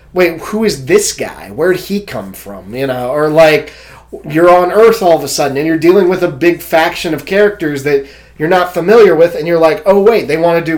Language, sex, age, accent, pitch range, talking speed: English, male, 30-49, American, 130-180 Hz, 245 wpm